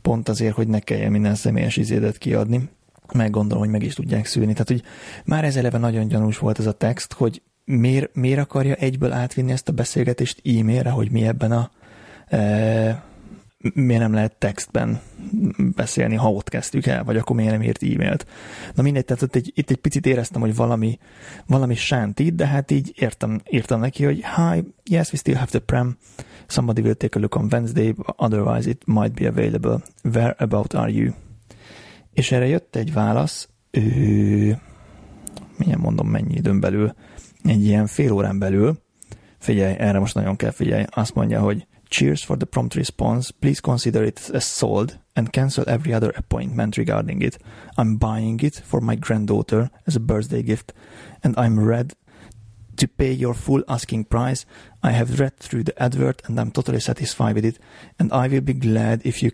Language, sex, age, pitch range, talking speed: Hungarian, male, 30-49, 110-130 Hz, 180 wpm